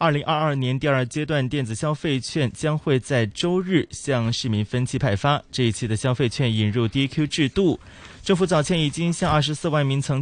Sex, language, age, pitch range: male, Chinese, 20-39, 115-150 Hz